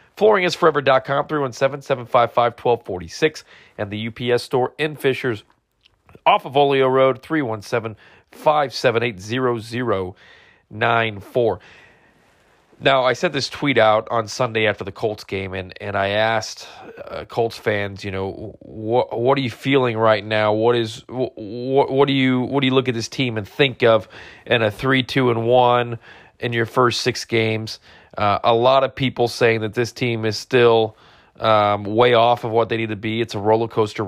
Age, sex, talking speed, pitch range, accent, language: 40-59, male, 165 wpm, 110-130 Hz, American, English